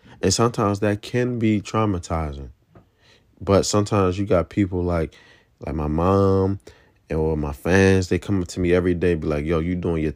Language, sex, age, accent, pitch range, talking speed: English, male, 20-39, American, 85-110 Hz, 195 wpm